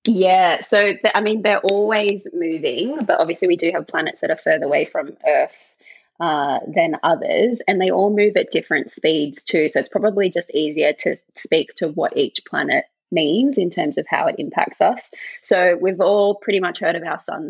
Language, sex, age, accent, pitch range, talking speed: English, female, 20-39, Australian, 160-205 Hz, 200 wpm